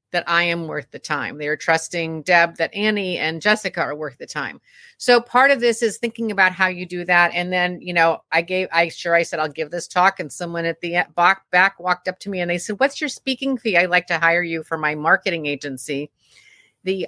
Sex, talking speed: female, 245 wpm